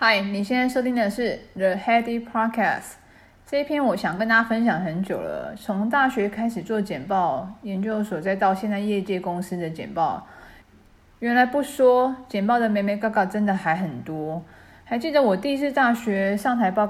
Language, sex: Chinese, female